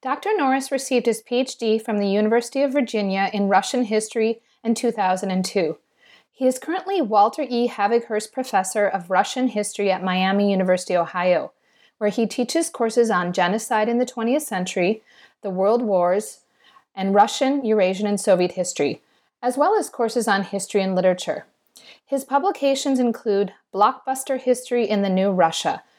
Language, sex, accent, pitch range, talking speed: English, female, American, 190-250 Hz, 150 wpm